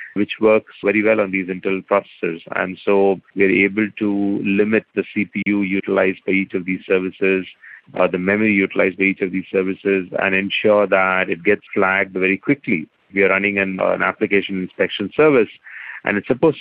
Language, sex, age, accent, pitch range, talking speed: English, male, 40-59, Indian, 95-105 Hz, 185 wpm